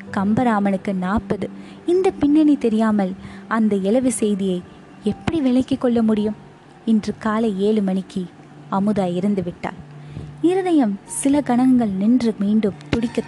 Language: Tamil